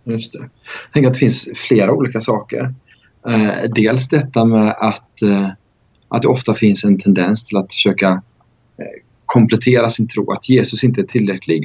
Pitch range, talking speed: 100-120 Hz, 170 wpm